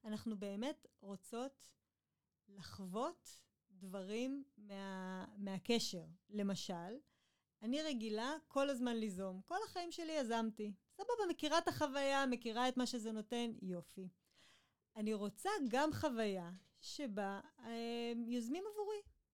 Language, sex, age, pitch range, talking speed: Hebrew, female, 30-49, 205-305 Hz, 110 wpm